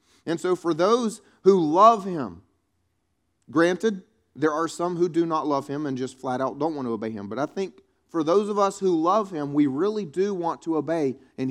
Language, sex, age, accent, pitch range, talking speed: English, male, 30-49, American, 115-185 Hz, 220 wpm